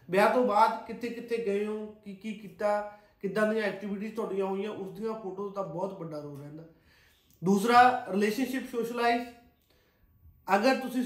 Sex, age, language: male, 30-49, Punjabi